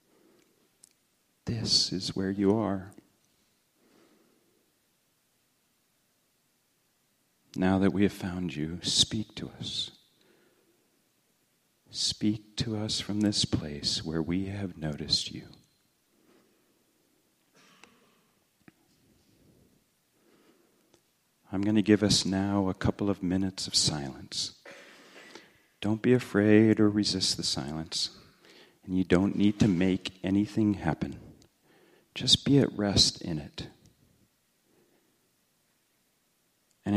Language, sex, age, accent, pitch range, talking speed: English, male, 40-59, American, 85-105 Hz, 95 wpm